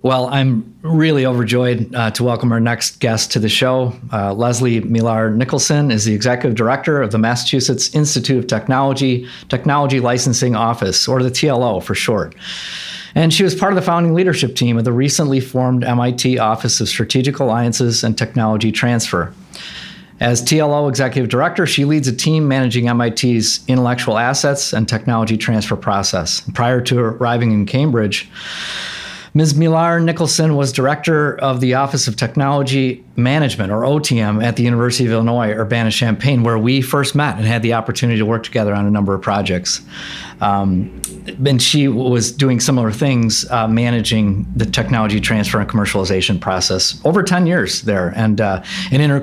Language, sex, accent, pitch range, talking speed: English, male, American, 110-135 Hz, 165 wpm